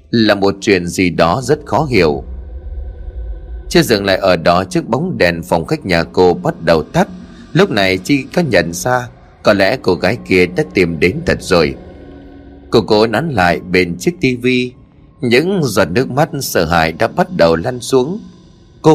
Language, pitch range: Vietnamese, 85-115 Hz